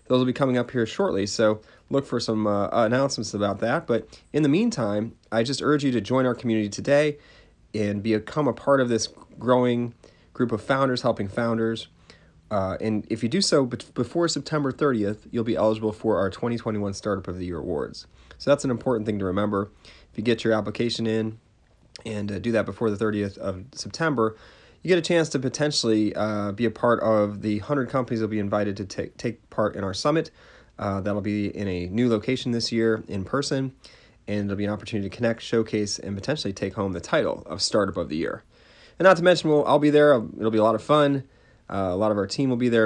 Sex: male